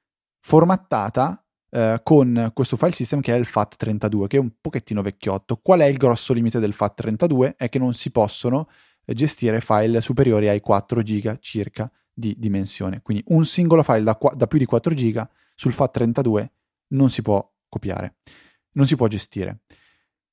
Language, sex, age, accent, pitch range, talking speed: Italian, male, 20-39, native, 105-135 Hz, 170 wpm